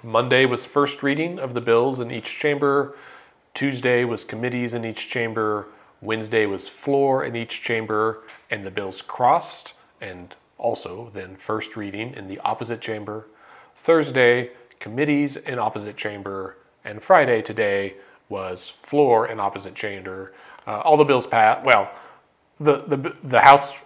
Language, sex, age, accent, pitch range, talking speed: English, male, 40-59, American, 110-140 Hz, 145 wpm